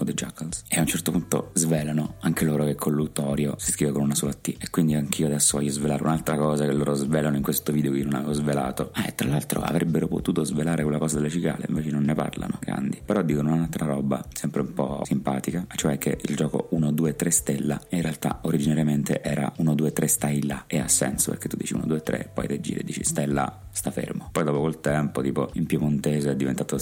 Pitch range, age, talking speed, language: 70-80 Hz, 30-49, 235 wpm, Italian